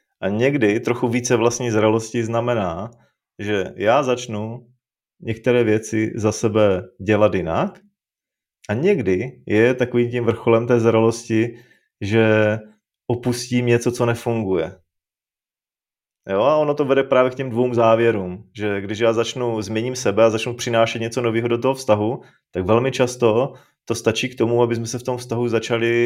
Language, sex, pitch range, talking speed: Czech, male, 115-125 Hz, 155 wpm